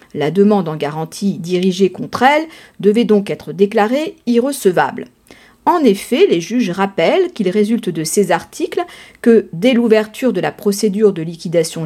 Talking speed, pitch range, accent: 150 wpm, 180-240 Hz, French